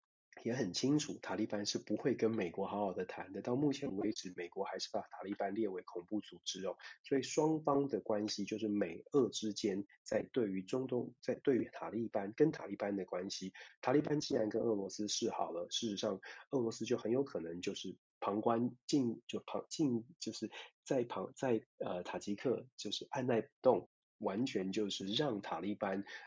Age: 30-49